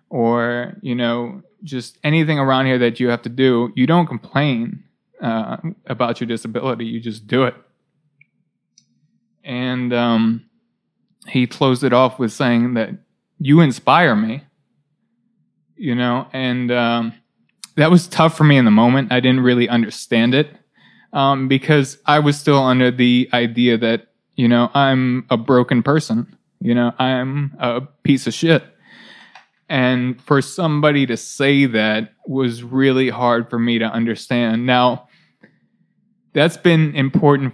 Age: 20-39